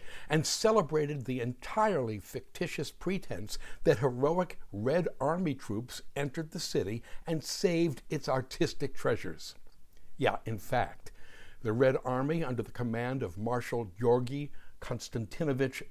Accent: American